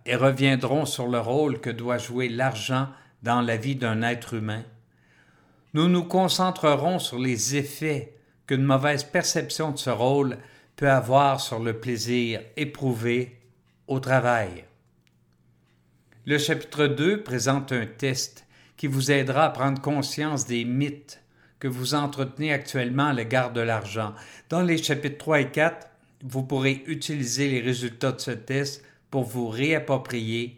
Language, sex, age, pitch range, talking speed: French, male, 50-69, 120-145 Hz, 145 wpm